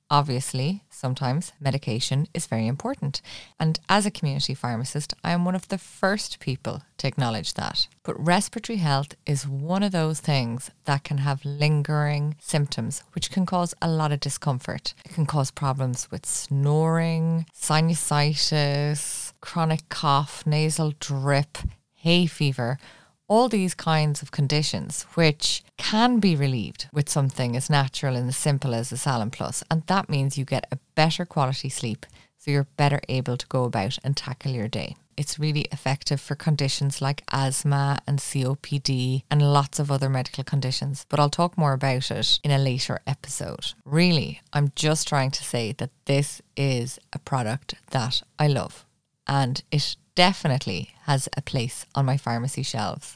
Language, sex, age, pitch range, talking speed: English, female, 20-39, 135-155 Hz, 160 wpm